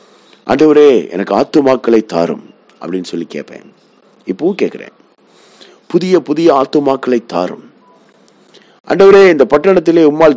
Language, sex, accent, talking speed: Tamil, male, native, 100 wpm